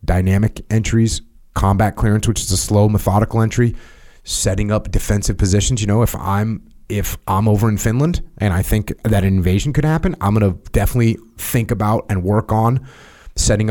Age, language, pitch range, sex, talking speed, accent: 30-49, English, 95-110 Hz, male, 175 wpm, American